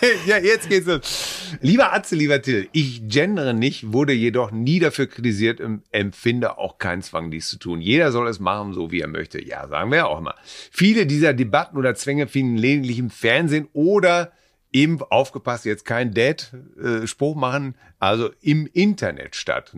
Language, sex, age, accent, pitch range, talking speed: German, male, 30-49, German, 105-145 Hz, 180 wpm